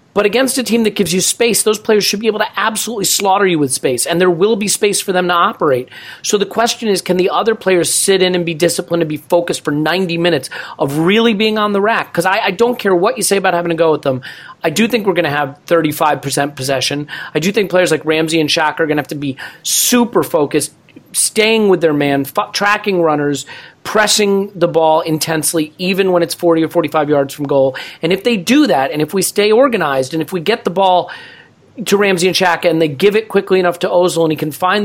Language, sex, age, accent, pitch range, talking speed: English, male, 40-59, American, 150-200 Hz, 245 wpm